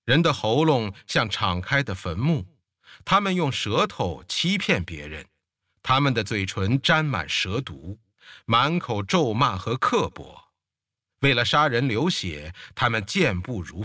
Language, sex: Chinese, male